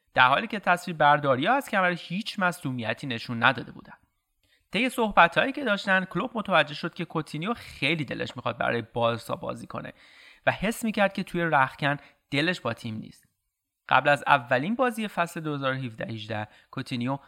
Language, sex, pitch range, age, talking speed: Persian, male, 130-185 Hz, 30-49, 160 wpm